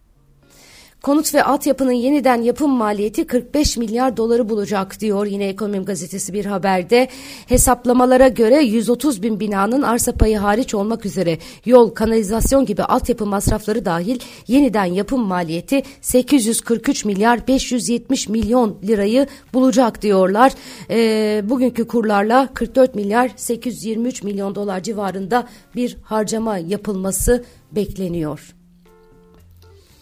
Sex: female